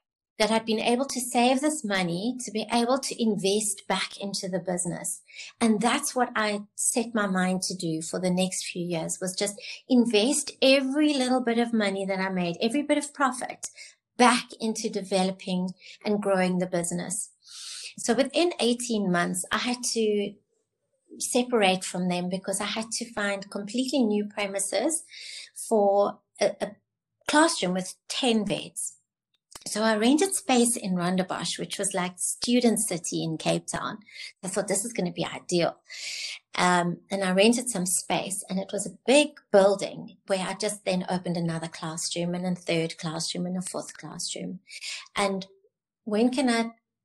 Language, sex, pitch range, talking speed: English, female, 185-240 Hz, 165 wpm